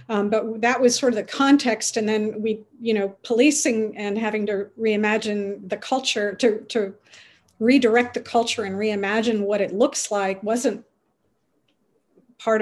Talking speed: 155 wpm